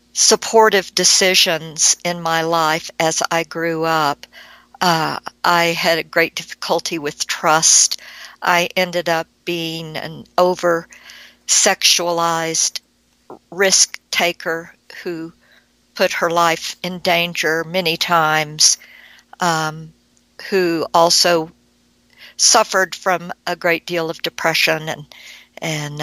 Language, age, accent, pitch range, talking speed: English, 60-79, American, 160-190 Hz, 105 wpm